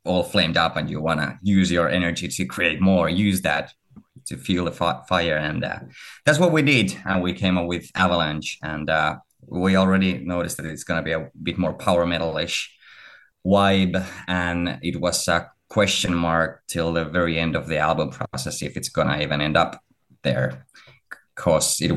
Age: 30-49